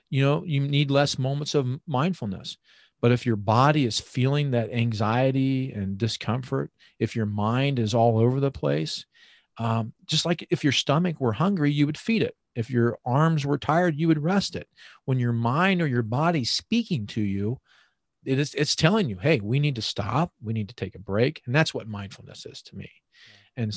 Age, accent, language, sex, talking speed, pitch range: 40-59, American, English, male, 205 wpm, 110-145 Hz